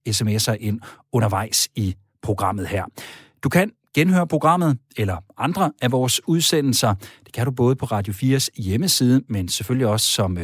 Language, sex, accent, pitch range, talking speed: Danish, male, native, 100-140 Hz, 155 wpm